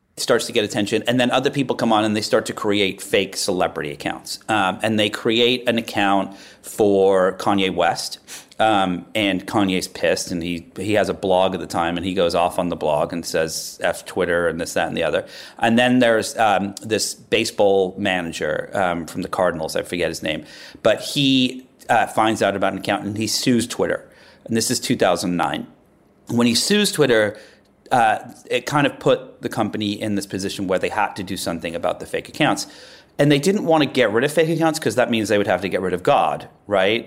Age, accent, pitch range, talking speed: 40-59, American, 95-125 Hz, 215 wpm